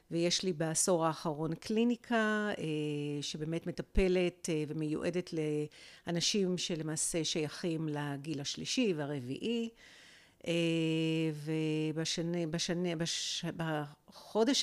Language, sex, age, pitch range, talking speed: Hebrew, female, 50-69, 160-200 Hz, 60 wpm